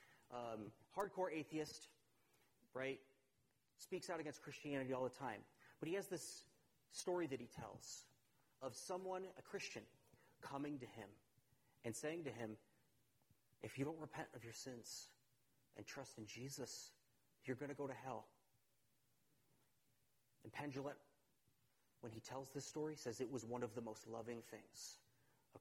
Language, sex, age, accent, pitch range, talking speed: English, male, 30-49, American, 120-145 Hz, 150 wpm